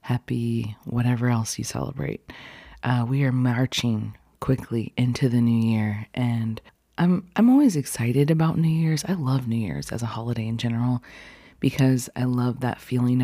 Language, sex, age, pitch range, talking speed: English, female, 30-49, 115-130 Hz, 165 wpm